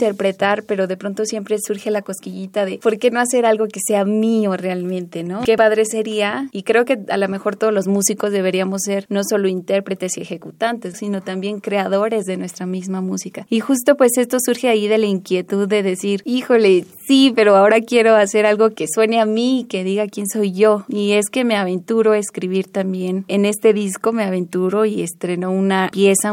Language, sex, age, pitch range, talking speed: Spanish, female, 20-39, 185-220 Hz, 205 wpm